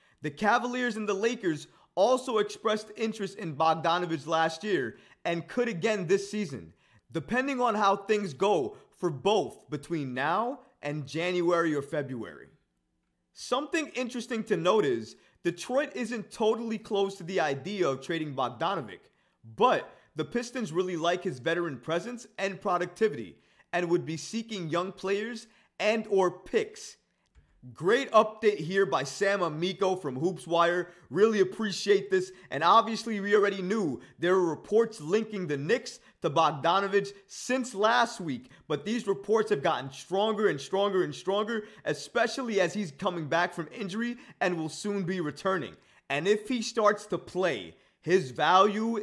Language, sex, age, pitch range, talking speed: English, male, 20-39, 170-220 Hz, 150 wpm